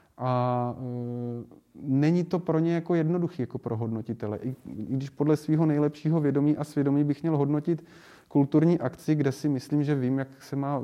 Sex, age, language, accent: male, 30-49, Czech, native